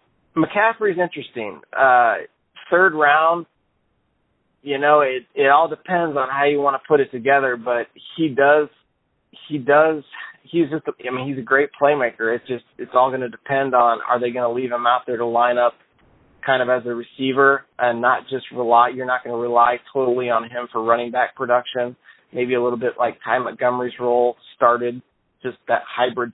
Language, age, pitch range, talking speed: English, 20-39, 115-135 Hz, 195 wpm